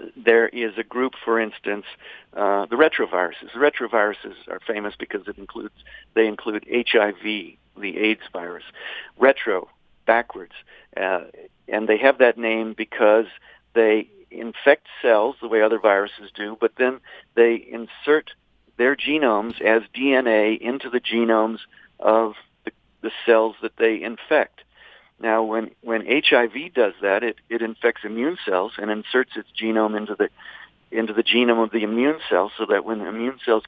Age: 50-69